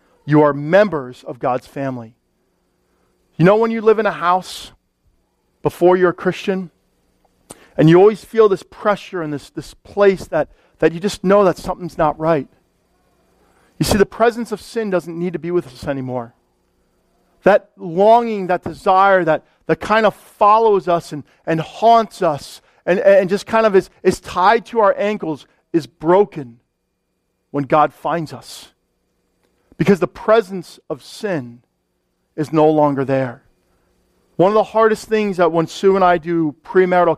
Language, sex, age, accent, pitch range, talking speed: English, male, 40-59, American, 150-200 Hz, 165 wpm